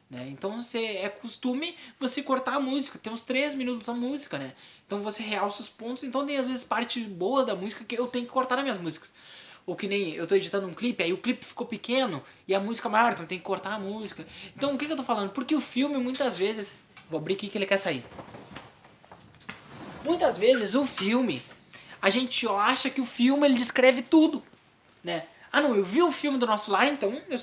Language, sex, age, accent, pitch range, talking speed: Portuguese, male, 20-39, Brazilian, 195-265 Hz, 230 wpm